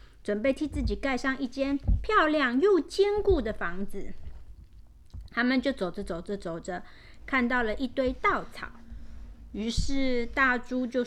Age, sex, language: 30-49, female, Chinese